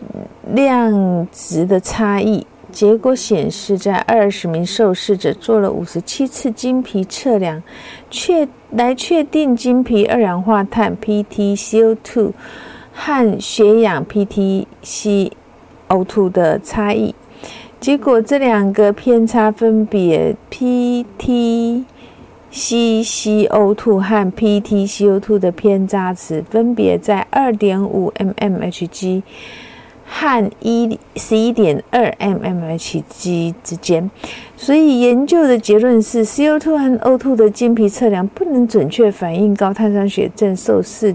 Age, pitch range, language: 50-69, 195-235 Hz, Chinese